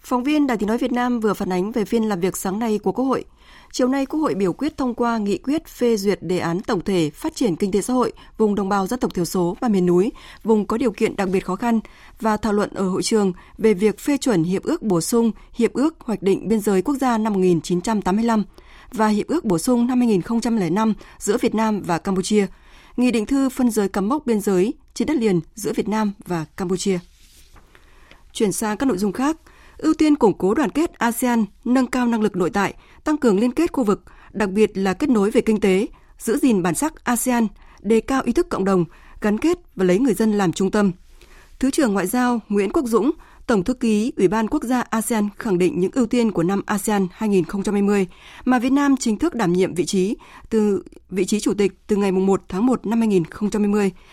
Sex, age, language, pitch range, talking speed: female, 20-39, Vietnamese, 190-245 Hz, 240 wpm